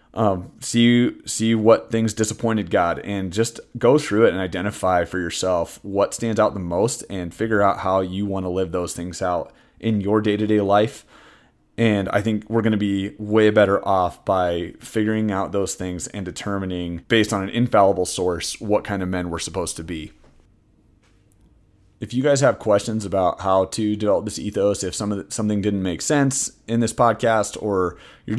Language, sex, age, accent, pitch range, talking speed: English, male, 30-49, American, 95-110 Hz, 185 wpm